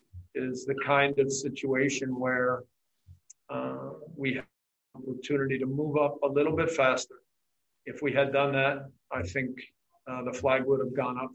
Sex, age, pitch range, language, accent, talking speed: male, 50-69, 130-145 Hz, English, American, 165 wpm